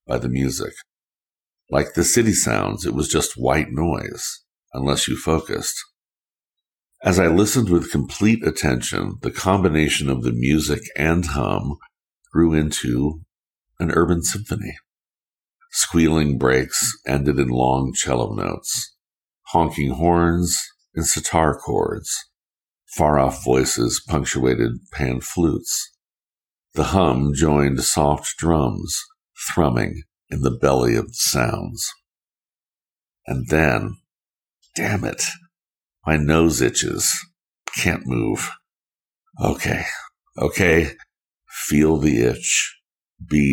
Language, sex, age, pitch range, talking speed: English, male, 60-79, 65-85 Hz, 110 wpm